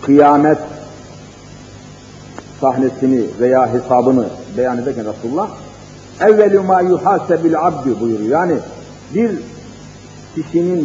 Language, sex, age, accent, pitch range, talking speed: Turkish, male, 50-69, native, 155-210 Hz, 85 wpm